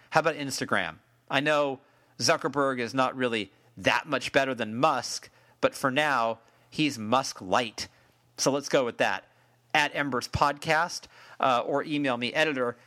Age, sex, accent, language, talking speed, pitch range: 40-59, male, American, English, 155 wpm, 125-165 Hz